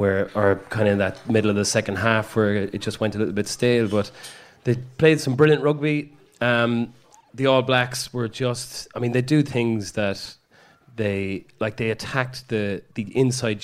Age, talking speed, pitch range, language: 30-49, 195 wpm, 95-115 Hz, English